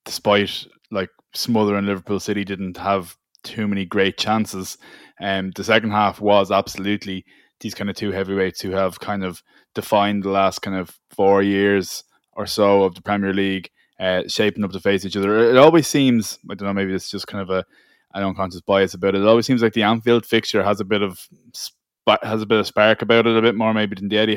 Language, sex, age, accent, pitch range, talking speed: English, male, 20-39, Irish, 100-110 Hz, 220 wpm